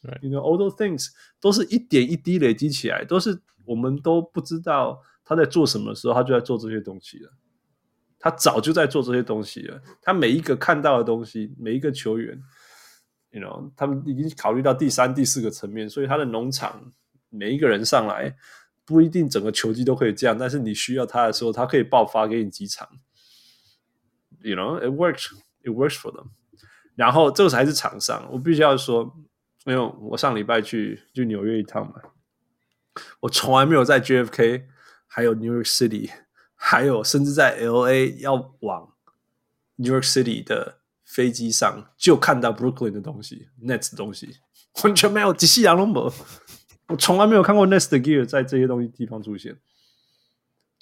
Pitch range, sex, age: 115-160 Hz, male, 20-39